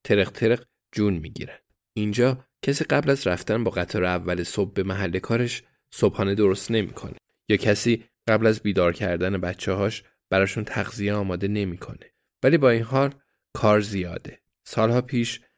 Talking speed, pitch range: 155 wpm, 95-120 Hz